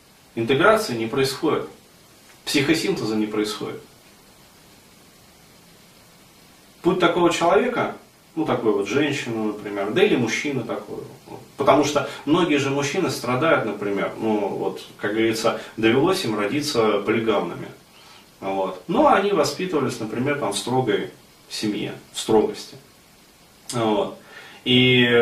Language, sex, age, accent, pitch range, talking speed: Russian, male, 30-49, native, 110-140 Hz, 110 wpm